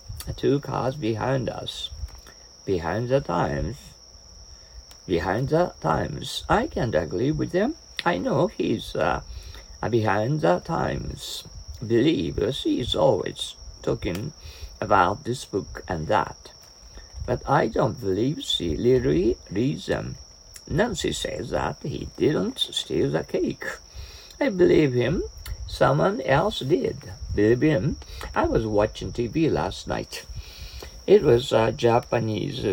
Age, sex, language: 60-79, male, Japanese